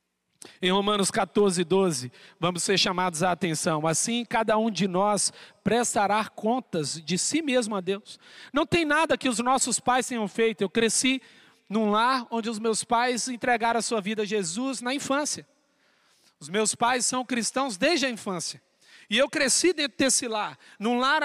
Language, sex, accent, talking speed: Portuguese, male, Brazilian, 175 wpm